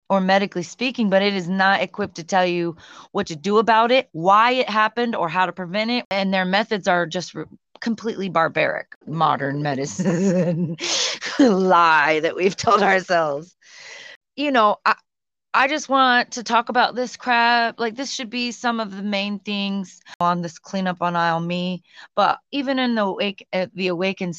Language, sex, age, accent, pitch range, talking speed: English, female, 30-49, American, 185-240 Hz, 175 wpm